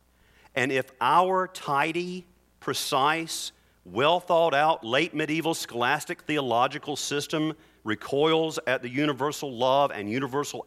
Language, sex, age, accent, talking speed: English, male, 40-59, American, 100 wpm